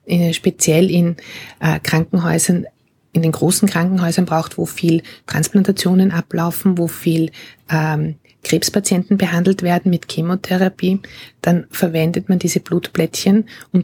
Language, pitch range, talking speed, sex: German, 160-190 Hz, 115 wpm, female